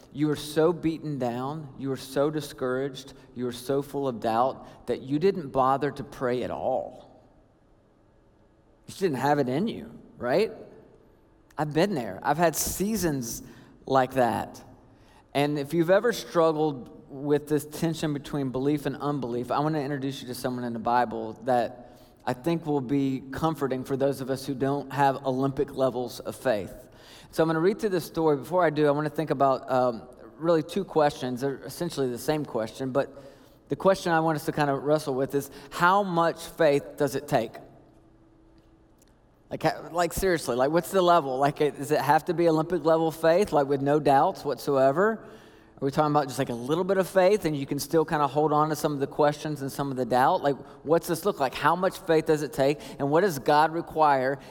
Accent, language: American, English